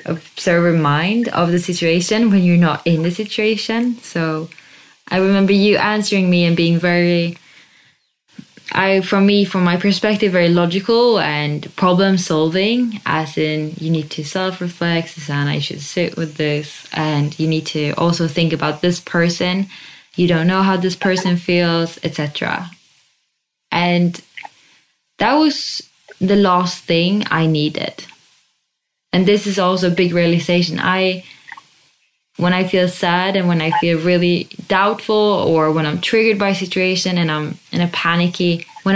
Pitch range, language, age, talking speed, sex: 165-195 Hz, English, 10-29, 150 wpm, female